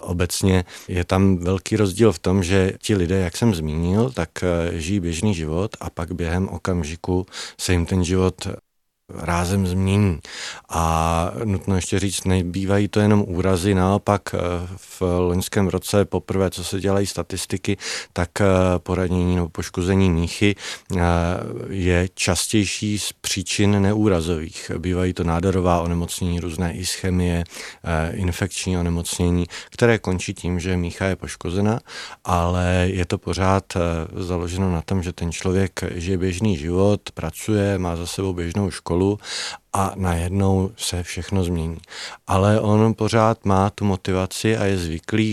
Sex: male